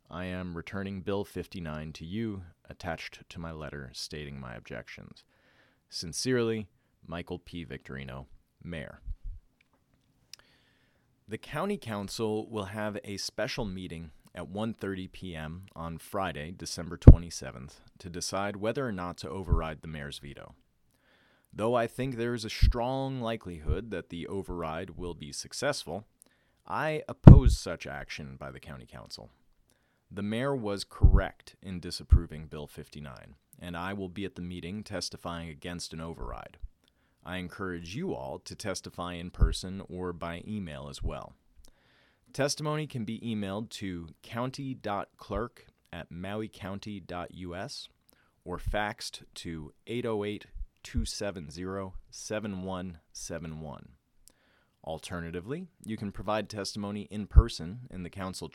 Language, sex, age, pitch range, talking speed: English, male, 30-49, 85-105 Hz, 125 wpm